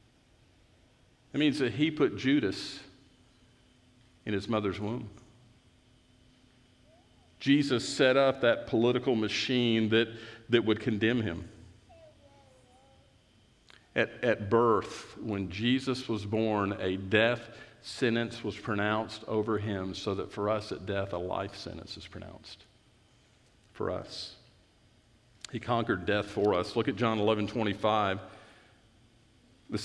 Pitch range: 105-120 Hz